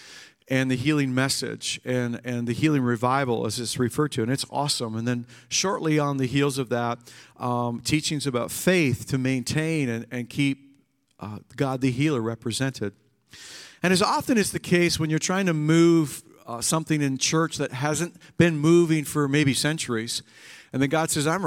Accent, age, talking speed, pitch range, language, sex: American, 50-69, 180 wpm, 130-160 Hz, English, male